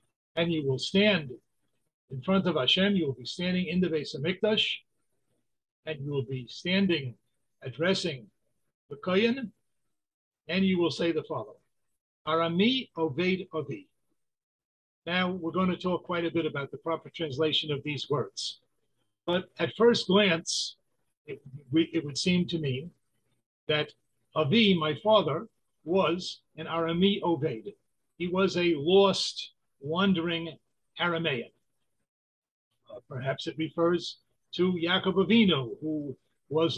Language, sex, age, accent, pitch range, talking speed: English, male, 50-69, American, 140-180 Hz, 135 wpm